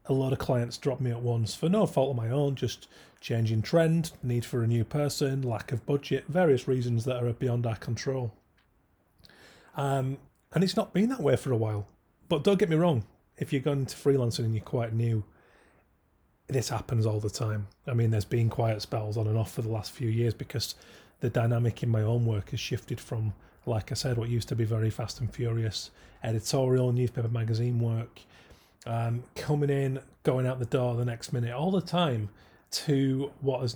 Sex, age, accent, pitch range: male, 30-49, British, 115-135 Hz